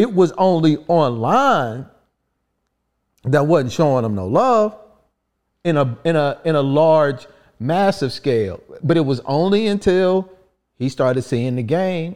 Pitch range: 120-185 Hz